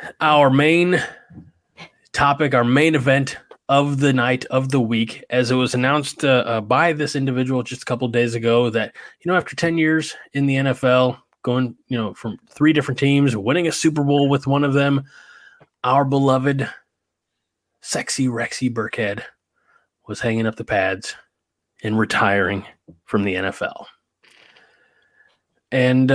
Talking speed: 155 wpm